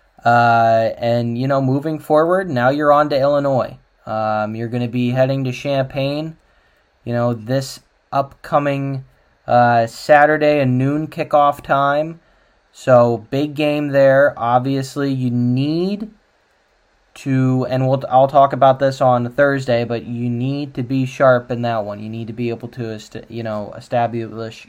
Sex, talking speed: male, 155 wpm